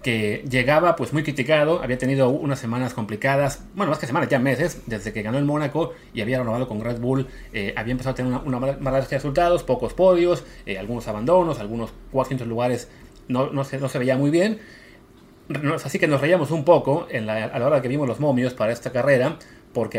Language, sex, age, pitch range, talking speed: Spanish, male, 30-49, 120-155 Hz, 220 wpm